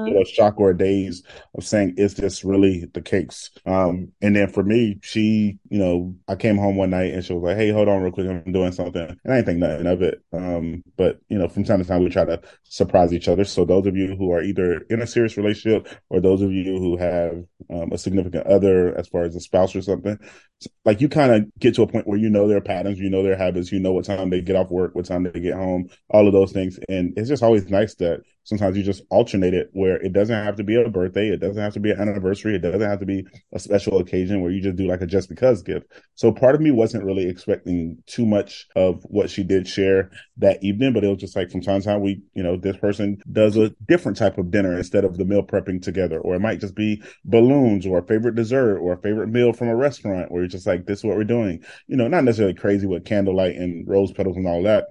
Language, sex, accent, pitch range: English, male, American, 90-105 Hz